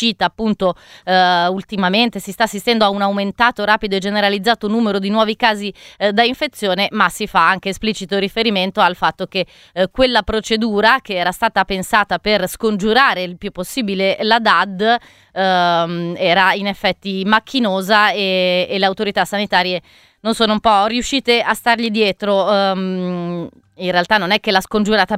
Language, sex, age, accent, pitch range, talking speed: Italian, female, 30-49, native, 185-210 Hz, 150 wpm